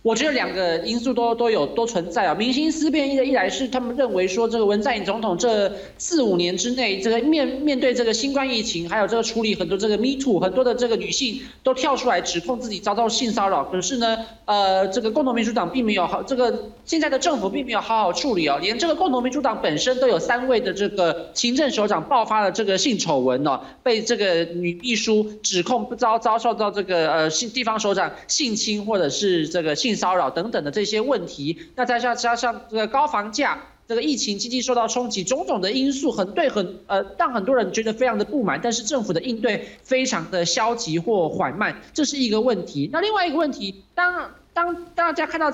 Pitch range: 195-260 Hz